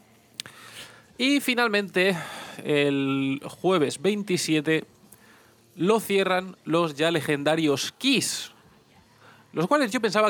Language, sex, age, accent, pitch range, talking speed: Spanish, male, 20-39, Spanish, 145-190 Hz, 85 wpm